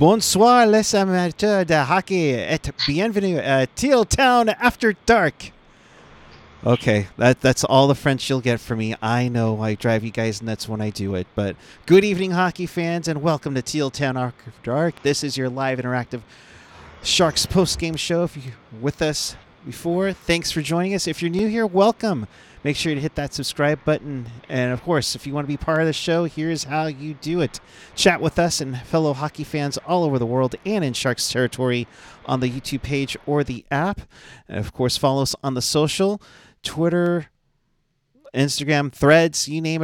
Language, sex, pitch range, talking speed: English, male, 125-170 Hz, 190 wpm